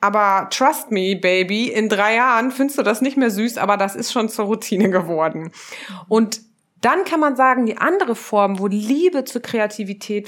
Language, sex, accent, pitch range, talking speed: German, female, German, 185-235 Hz, 185 wpm